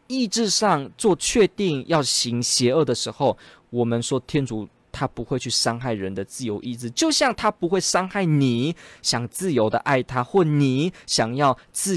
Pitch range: 115-175 Hz